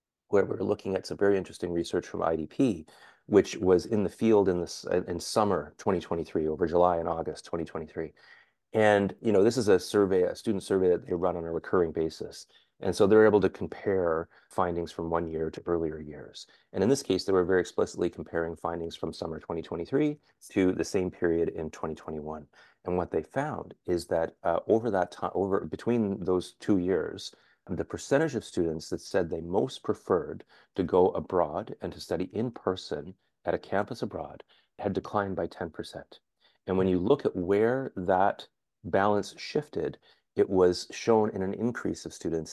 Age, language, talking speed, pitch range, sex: 30-49, English, 185 wpm, 85-100 Hz, male